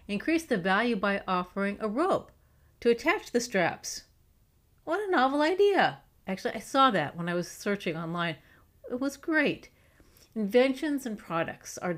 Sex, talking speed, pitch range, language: female, 155 wpm, 160-205 Hz, English